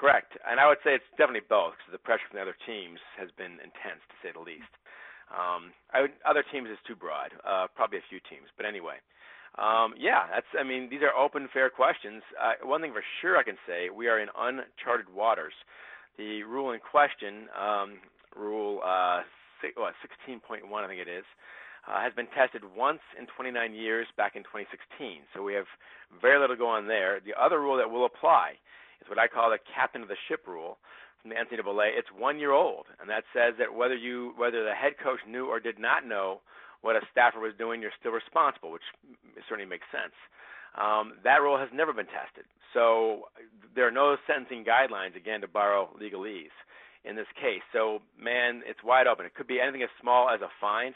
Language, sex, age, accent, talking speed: English, male, 40-59, American, 210 wpm